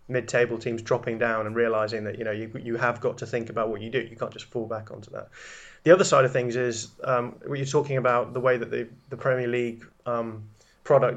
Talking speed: 245 wpm